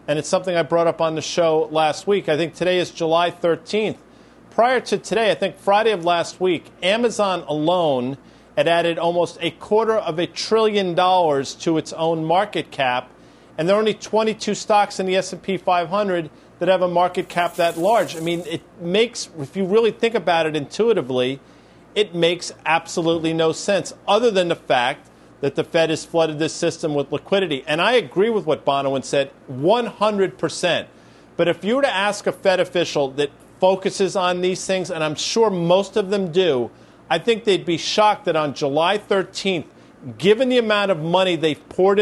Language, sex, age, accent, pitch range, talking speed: English, male, 40-59, American, 155-195 Hz, 190 wpm